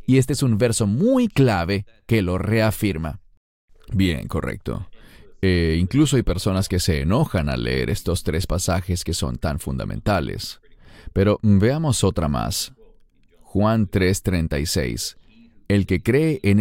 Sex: male